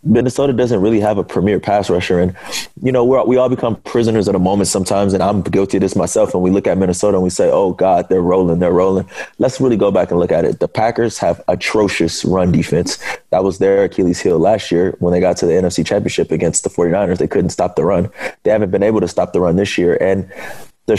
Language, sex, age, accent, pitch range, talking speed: English, male, 20-39, American, 90-110 Hz, 250 wpm